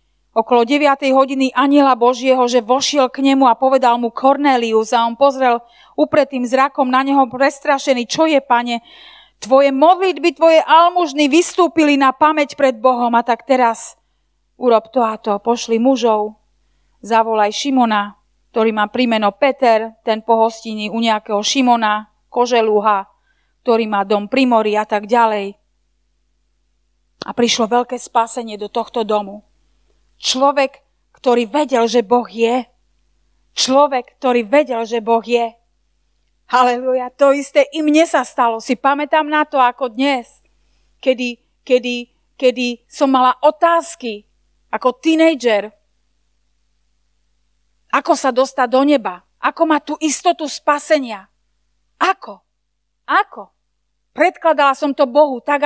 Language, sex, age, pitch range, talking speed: Slovak, female, 30-49, 225-280 Hz, 125 wpm